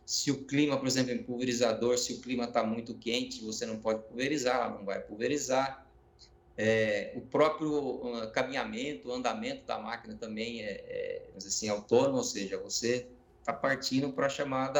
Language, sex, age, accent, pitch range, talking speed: Portuguese, male, 20-39, Brazilian, 125-170 Hz, 175 wpm